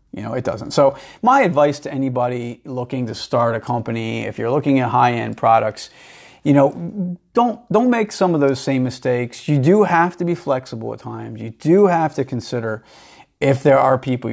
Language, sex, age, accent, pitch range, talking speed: English, male, 30-49, American, 115-145 Hz, 195 wpm